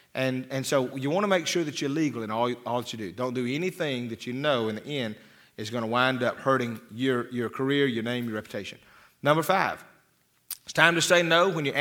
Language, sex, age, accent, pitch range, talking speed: English, male, 40-59, American, 120-160 Hz, 245 wpm